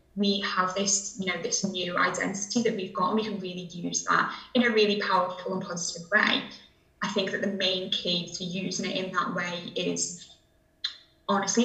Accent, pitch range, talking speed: British, 180-220 Hz, 195 wpm